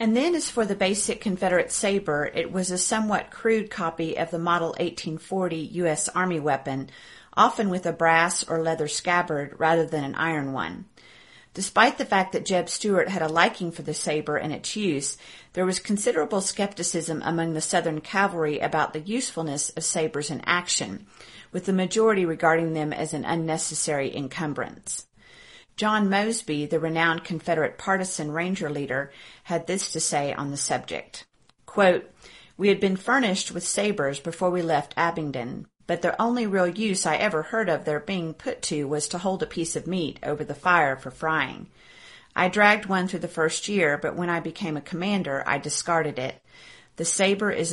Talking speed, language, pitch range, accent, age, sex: 180 wpm, English, 155-190 Hz, American, 40-59, female